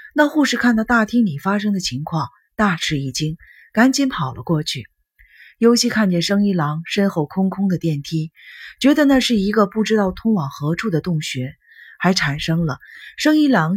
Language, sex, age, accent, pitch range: Chinese, female, 30-49, native, 160-230 Hz